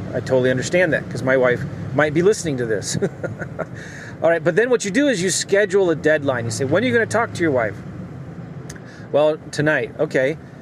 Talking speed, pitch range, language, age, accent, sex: 215 wpm, 135-185 Hz, English, 30-49, American, male